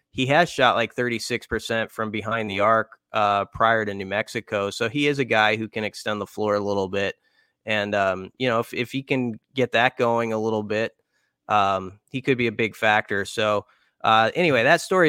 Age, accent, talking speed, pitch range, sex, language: 20-39, American, 210 wpm, 100-120 Hz, male, English